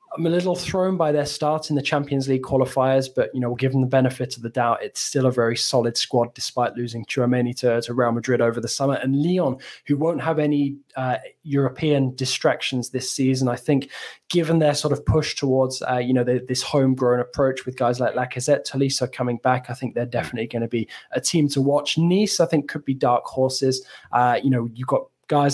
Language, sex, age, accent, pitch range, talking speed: English, male, 20-39, British, 125-145 Hz, 220 wpm